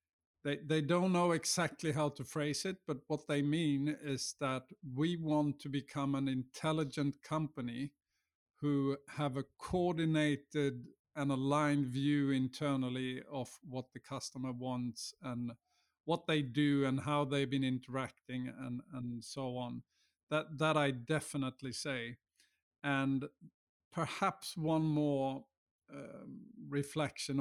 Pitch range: 130-150 Hz